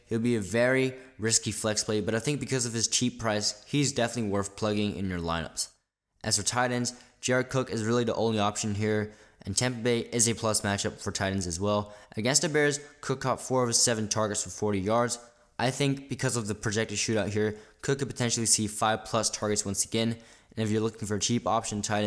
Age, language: 10-29, English